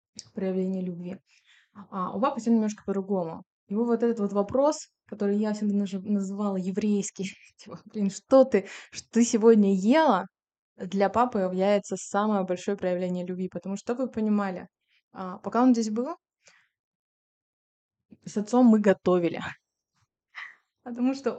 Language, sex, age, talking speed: Russian, female, 20-39, 130 wpm